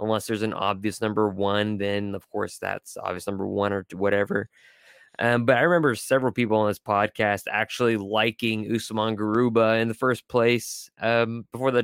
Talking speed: 175 wpm